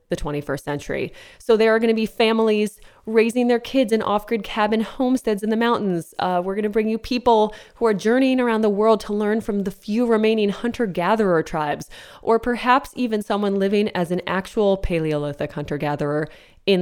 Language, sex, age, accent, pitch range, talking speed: English, female, 20-39, American, 165-225 Hz, 185 wpm